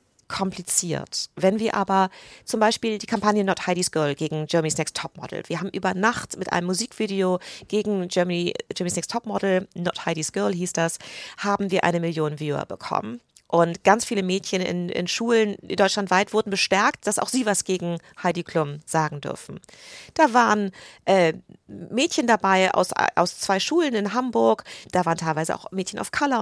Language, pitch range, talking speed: German, 170-210 Hz, 170 wpm